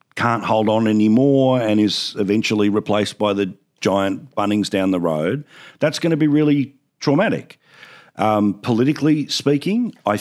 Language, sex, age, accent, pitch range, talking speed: English, male, 50-69, Australian, 95-120 Hz, 145 wpm